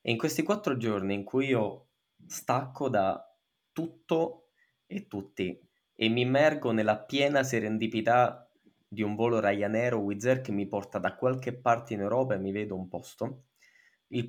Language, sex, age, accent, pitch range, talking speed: Italian, male, 20-39, native, 100-130 Hz, 165 wpm